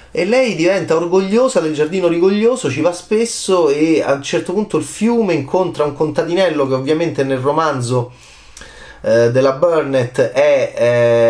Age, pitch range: 30-49, 120-170 Hz